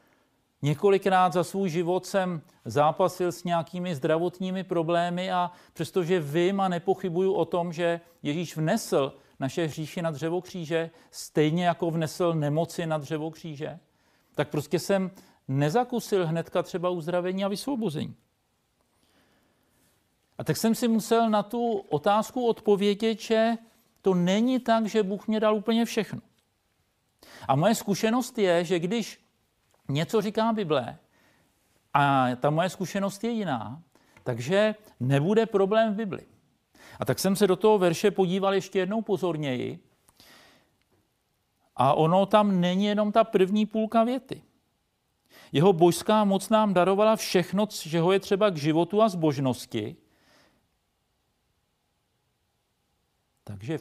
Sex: male